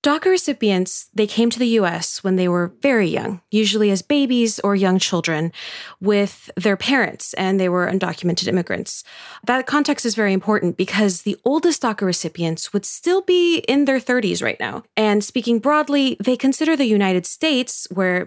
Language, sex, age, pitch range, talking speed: English, female, 20-39, 185-240 Hz, 175 wpm